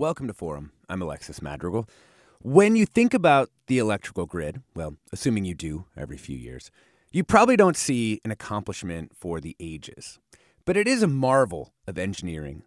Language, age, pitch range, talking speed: English, 30-49, 90-130 Hz, 170 wpm